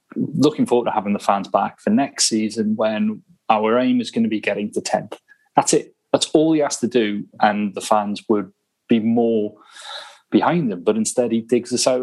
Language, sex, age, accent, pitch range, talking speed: English, male, 30-49, British, 115-180 Hz, 210 wpm